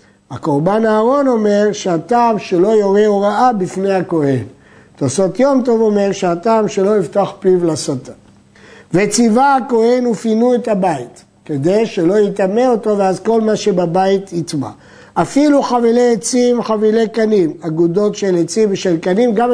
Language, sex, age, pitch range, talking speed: Hebrew, male, 60-79, 170-230 Hz, 130 wpm